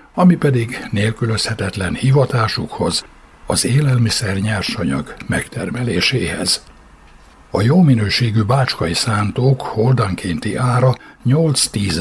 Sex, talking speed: male, 80 wpm